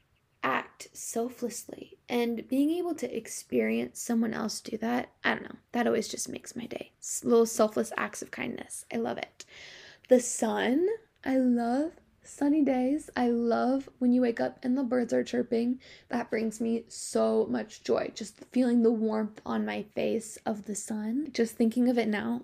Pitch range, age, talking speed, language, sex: 220-275 Hz, 10-29, 175 wpm, English, female